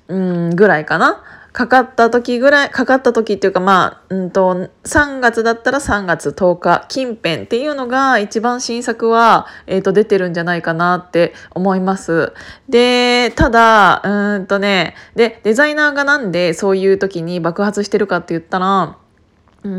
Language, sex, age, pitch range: Japanese, female, 20-39, 175-245 Hz